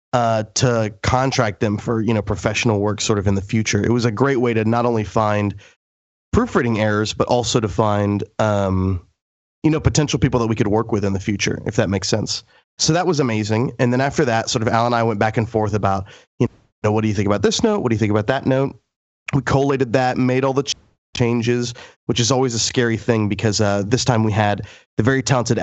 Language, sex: English, male